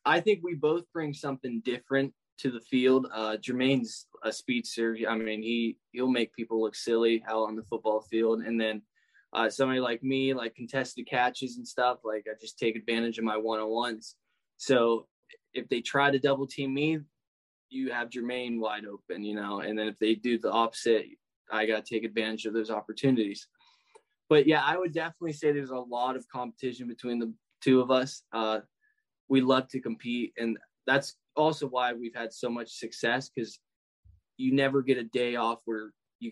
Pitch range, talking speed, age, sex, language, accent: 115-135 Hz, 190 wpm, 10-29, male, English, American